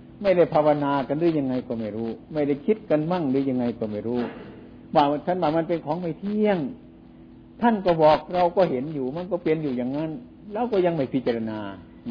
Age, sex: 60-79, male